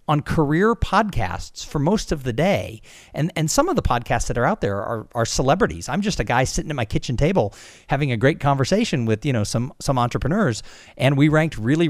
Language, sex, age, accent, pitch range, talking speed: English, male, 40-59, American, 115-165 Hz, 220 wpm